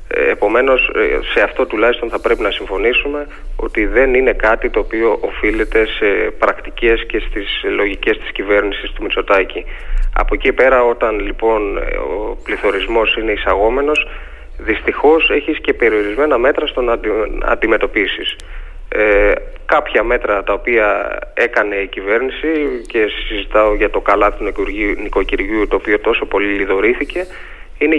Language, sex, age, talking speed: Greek, male, 20-39, 130 wpm